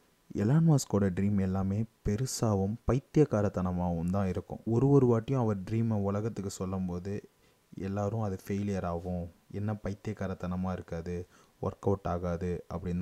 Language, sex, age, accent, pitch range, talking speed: Tamil, male, 30-49, native, 95-110 Hz, 120 wpm